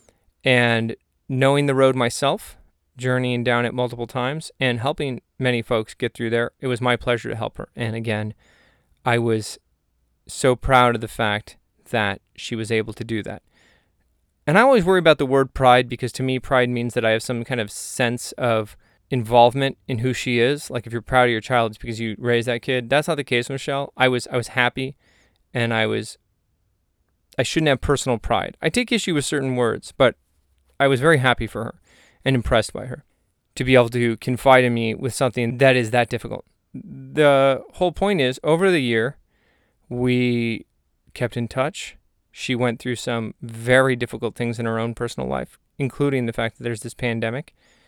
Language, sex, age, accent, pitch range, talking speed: English, male, 20-39, American, 115-130 Hz, 195 wpm